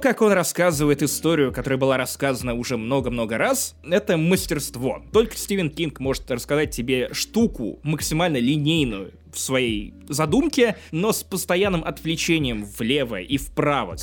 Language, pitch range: Russian, 130-185 Hz